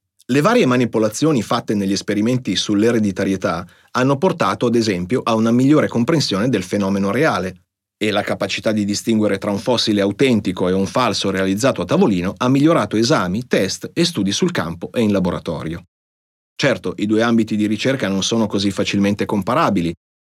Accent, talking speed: native, 160 wpm